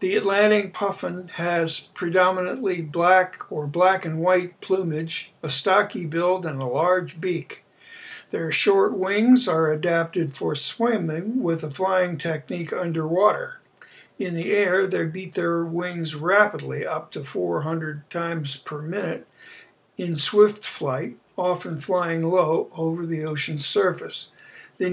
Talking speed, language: 130 wpm, English